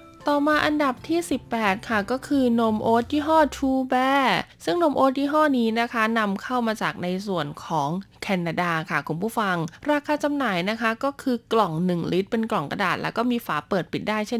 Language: Thai